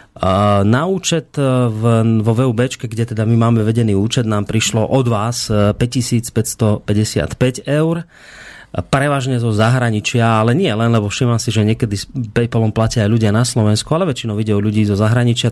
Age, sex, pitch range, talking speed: 30-49, male, 105-125 Hz, 160 wpm